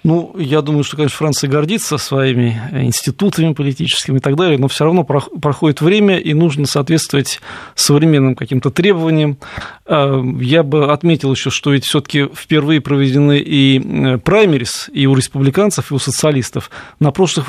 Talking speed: 150 wpm